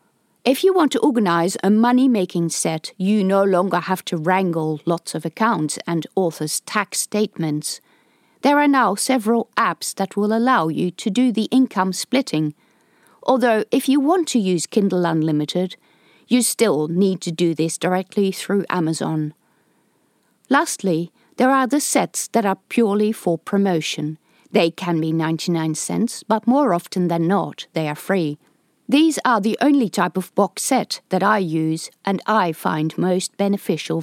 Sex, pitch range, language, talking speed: female, 165-230 Hz, English, 165 wpm